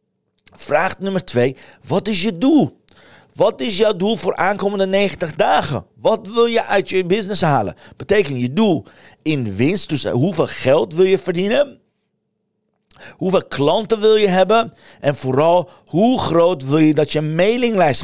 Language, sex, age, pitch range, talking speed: Dutch, male, 50-69, 125-180 Hz, 155 wpm